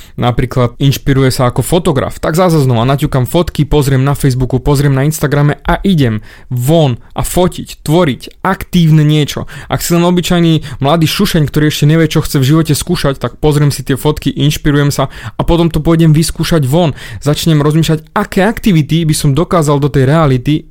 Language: Slovak